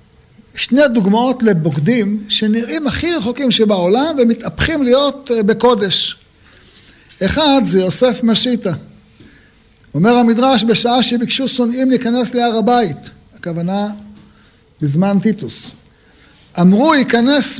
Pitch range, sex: 190-255 Hz, male